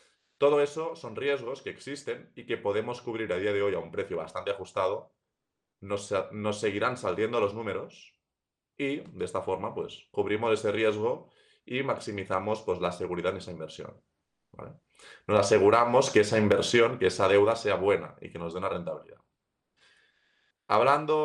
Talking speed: 165 wpm